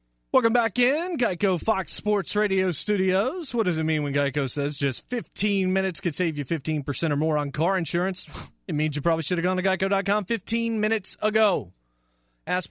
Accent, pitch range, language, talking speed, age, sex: American, 105-155 Hz, English, 190 wpm, 30-49, male